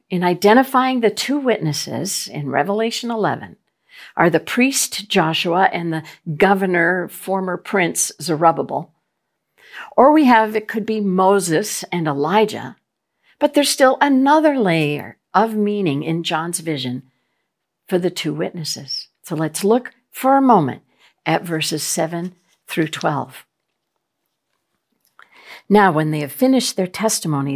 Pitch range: 160-220 Hz